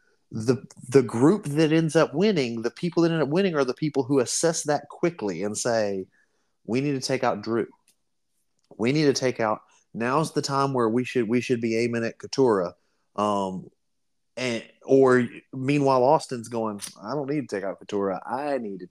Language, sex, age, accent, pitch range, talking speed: English, male, 30-49, American, 125-180 Hz, 195 wpm